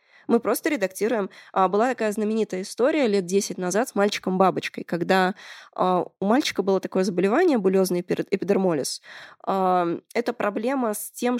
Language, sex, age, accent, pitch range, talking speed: Russian, female, 20-39, native, 180-230 Hz, 125 wpm